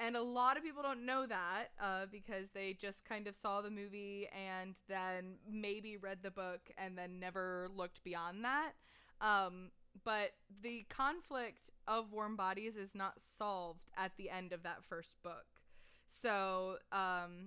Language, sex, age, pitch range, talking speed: English, female, 20-39, 185-215 Hz, 165 wpm